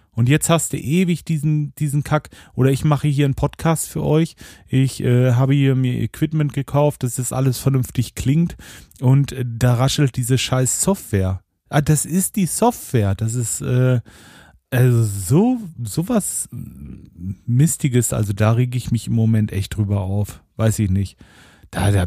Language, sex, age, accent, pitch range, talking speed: German, male, 40-59, German, 105-135 Hz, 170 wpm